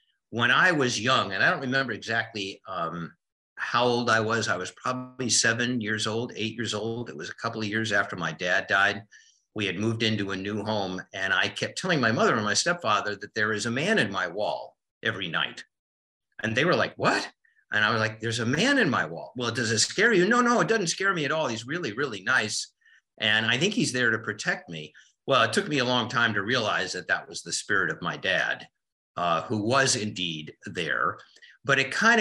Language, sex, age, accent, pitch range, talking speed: English, male, 50-69, American, 100-130 Hz, 230 wpm